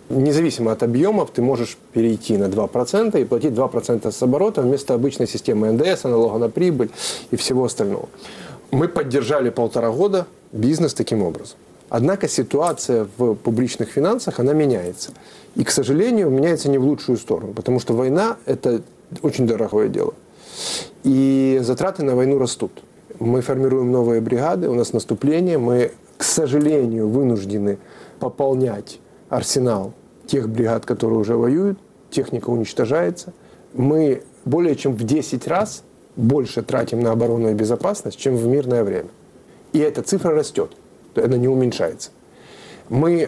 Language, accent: Russian, native